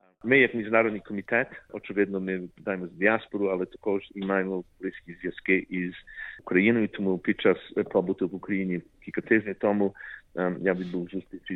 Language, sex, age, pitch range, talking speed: Ukrainian, male, 50-69, 90-100 Hz, 145 wpm